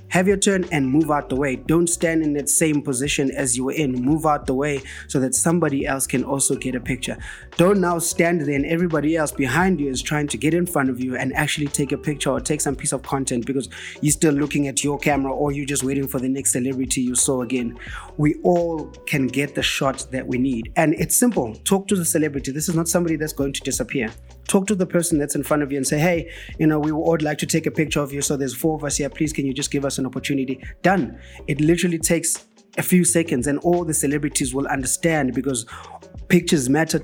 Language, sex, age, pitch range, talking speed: English, male, 20-39, 135-165 Hz, 250 wpm